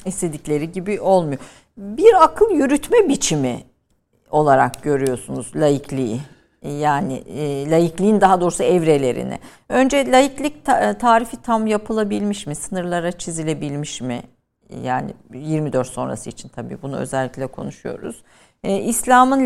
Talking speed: 100 wpm